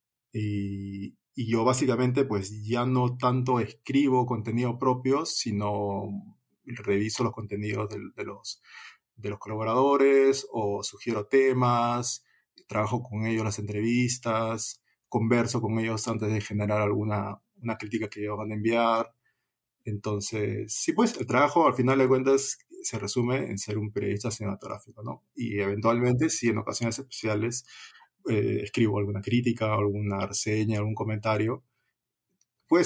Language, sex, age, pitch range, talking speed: Spanish, male, 20-39, 105-125 Hz, 140 wpm